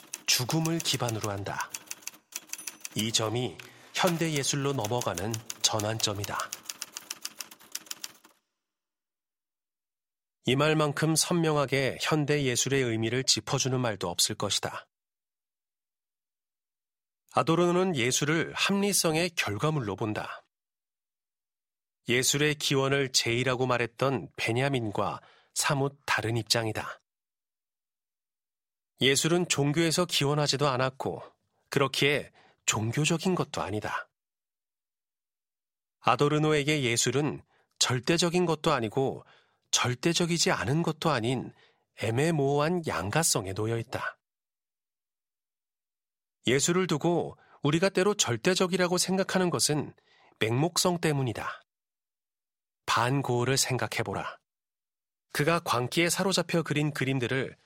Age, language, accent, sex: 40-59, Korean, native, male